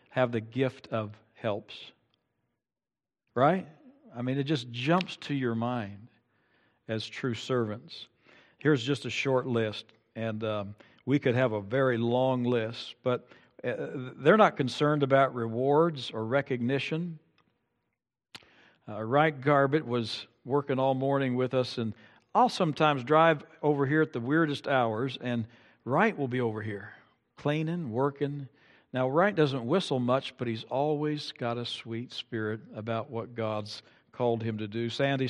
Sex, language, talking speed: male, English, 145 wpm